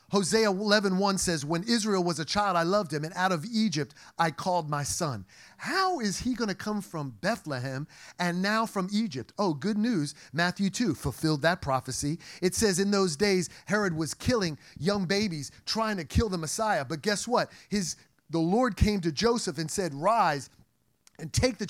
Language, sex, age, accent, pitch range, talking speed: English, male, 40-59, American, 155-210 Hz, 190 wpm